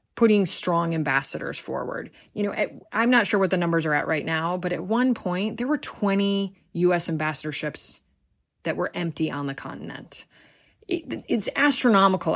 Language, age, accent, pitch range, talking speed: English, 20-39, American, 150-195 Hz, 160 wpm